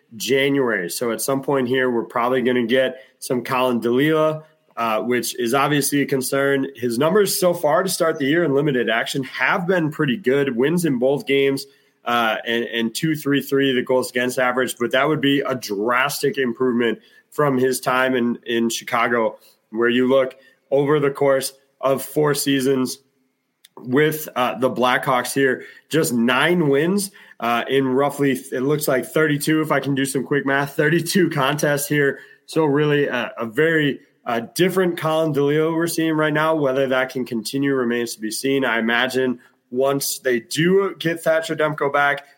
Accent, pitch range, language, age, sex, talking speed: American, 125-150 Hz, English, 30-49, male, 175 wpm